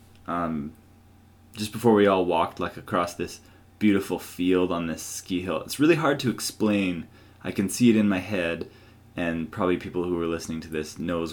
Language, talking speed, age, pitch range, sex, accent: English, 190 wpm, 20-39, 85-105 Hz, male, American